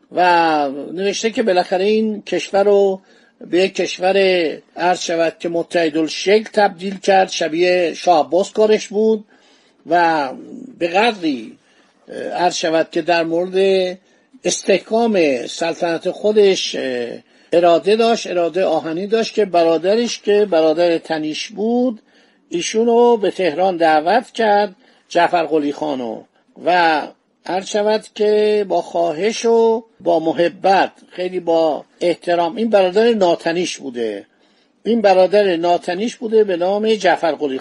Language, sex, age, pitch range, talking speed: Persian, male, 50-69, 170-220 Hz, 115 wpm